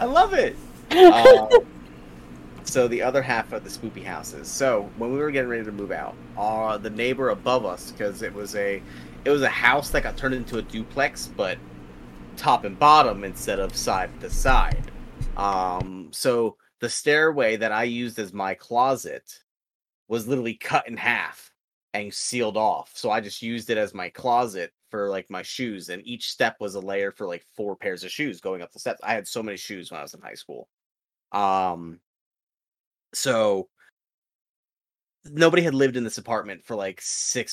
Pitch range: 95-130 Hz